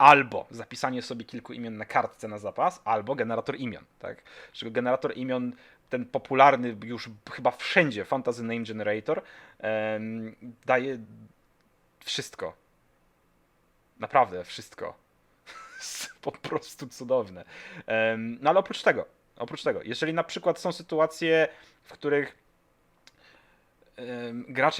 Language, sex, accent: Polish, male, native